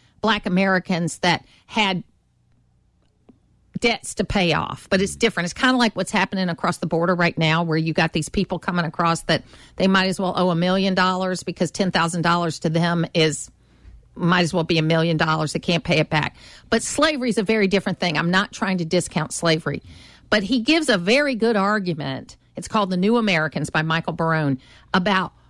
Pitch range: 160-195 Hz